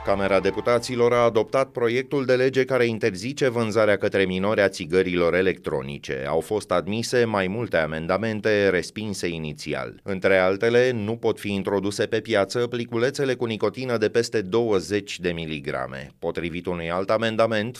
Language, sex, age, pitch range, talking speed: Romanian, male, 30-49, 90-115 Hz, 145 wpm